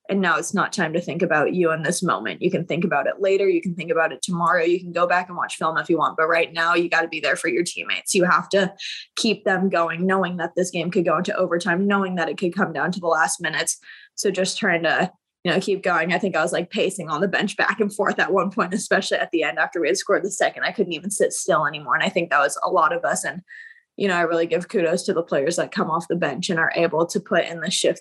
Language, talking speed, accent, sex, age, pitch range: English, 300 wpm, American, female, 20-39, 165-200 Hz